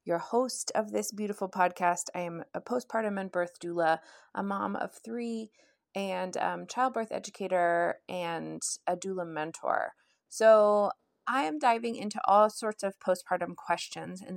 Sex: female